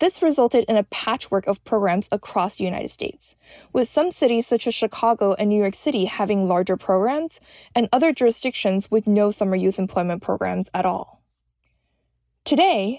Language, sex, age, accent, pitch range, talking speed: English, female, 20-39, American, 195-255 Hz, 165 wpm